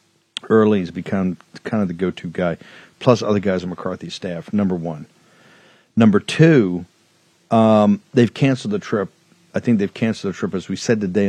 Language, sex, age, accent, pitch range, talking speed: English, male, 50-69, American, 100-125 Hz, 175 wpm